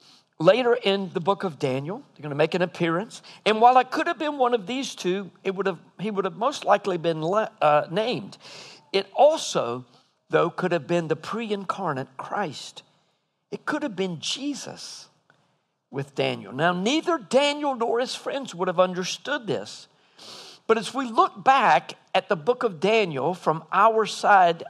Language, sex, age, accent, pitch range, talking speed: English, male, 50-69, American, 175-245 Hz, 175 wpm